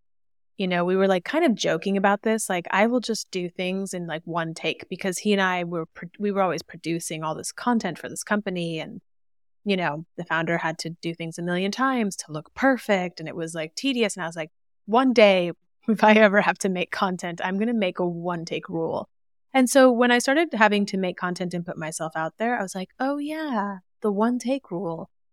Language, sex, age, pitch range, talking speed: English, female, 20-39, 165-200 Hz, 235 wpm